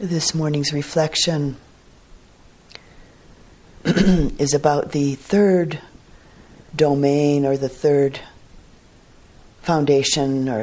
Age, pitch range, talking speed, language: 50-69, 130-145 Hz, 75 wpm, English